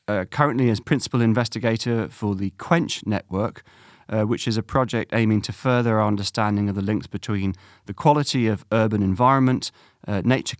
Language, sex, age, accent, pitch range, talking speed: English, male, 30-49, British, 100-120 Hz, 170 wpm